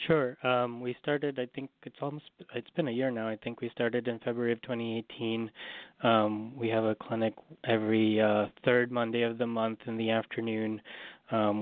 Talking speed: 195 wpm